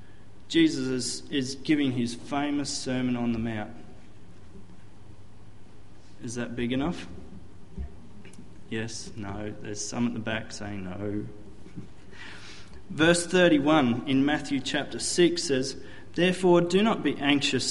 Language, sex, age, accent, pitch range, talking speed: English, male, 30-49, Australian, 105-140 Hz, 120 wpm